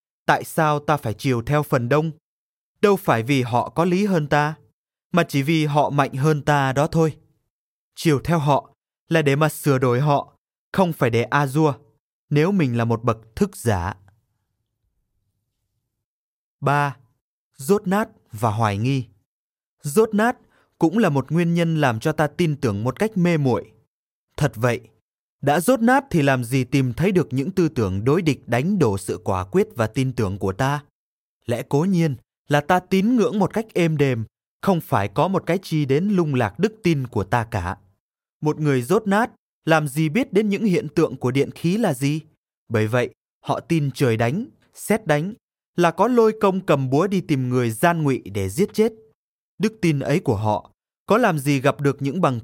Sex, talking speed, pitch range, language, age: male, 190 wpm, 125-170 Hz, Vietnamese, 20-39